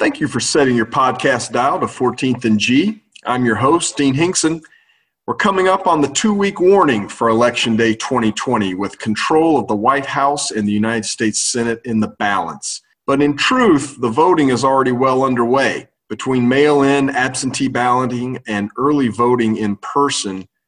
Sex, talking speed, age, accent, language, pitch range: male, 170 wpm, 40-59, American, English, 110-135 Hz